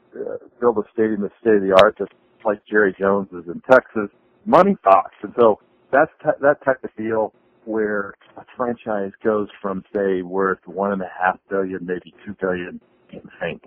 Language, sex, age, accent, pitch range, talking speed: English, male, 50-69, American, 100-145 Hz, 190 wpm